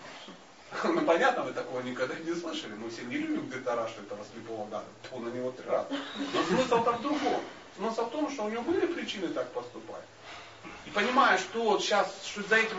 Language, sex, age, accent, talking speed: Russian, male, 30-49, native, 190 wpm